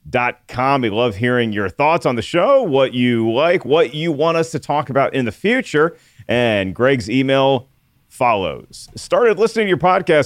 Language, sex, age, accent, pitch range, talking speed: English, male, 40-59, American, 120-150 Hz, 185 wpm